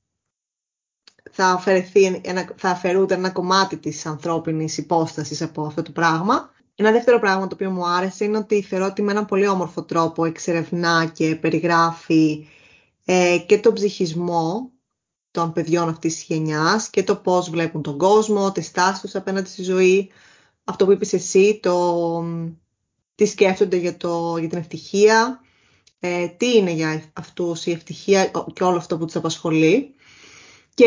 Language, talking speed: Greek, 155 wpm